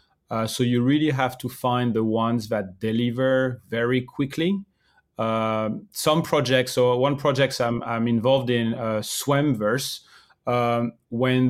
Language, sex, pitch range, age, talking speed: English, male, 110-130 Hz, 30-49, 135 wpm